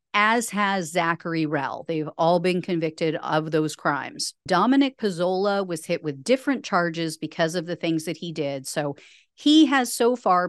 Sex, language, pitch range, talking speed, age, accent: female, English, 160-230 Hz, 170 wpm, 40-59, American